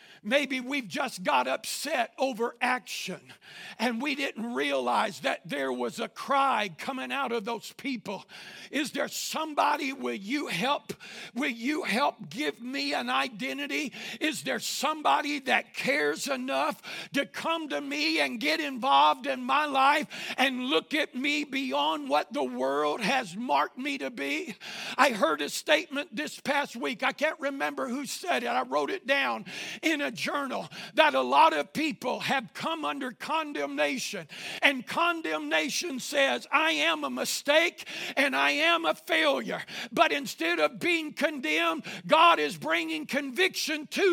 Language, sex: English, male